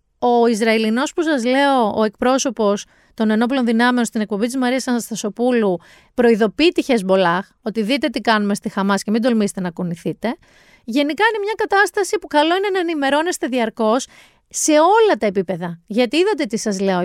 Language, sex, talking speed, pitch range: Greek, female, 170 wpm, 205-295 Hz